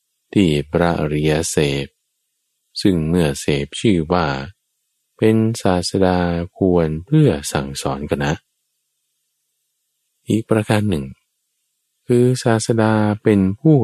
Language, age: Thai, 20-39